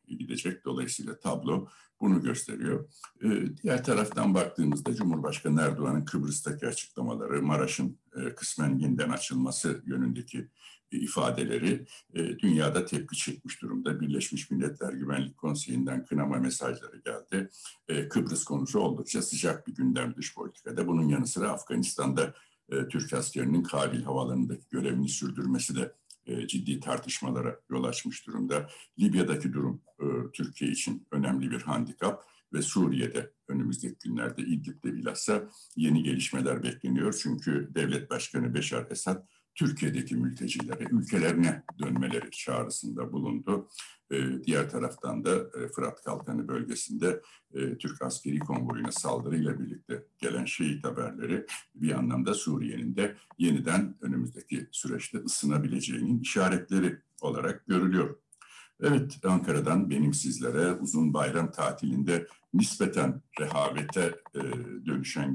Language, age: Turkish, 60-79